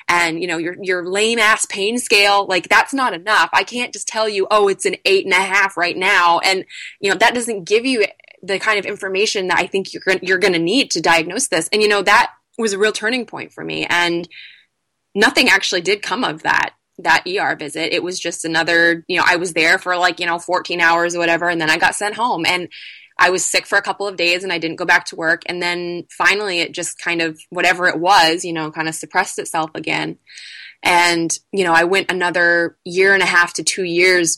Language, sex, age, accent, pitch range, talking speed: English, female, 20-39, American, 170-205 Hz, 240 wpm